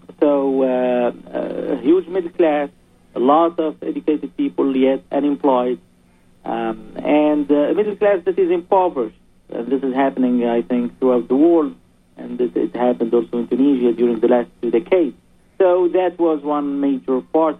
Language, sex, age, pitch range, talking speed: English, male, 50-69, 120-160 Hz, 165 wpm